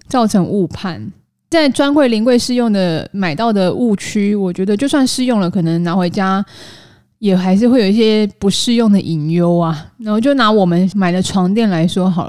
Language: Chinese